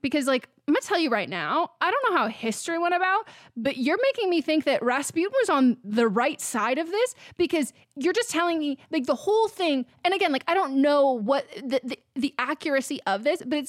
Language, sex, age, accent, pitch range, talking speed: English, female, 20-39, American, 255-335 Hz, 235 wpm